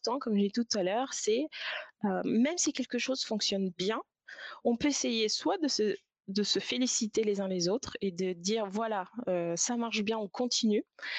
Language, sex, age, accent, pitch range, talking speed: French, female, 20-39, French, 195-230 Hz, 200 wpm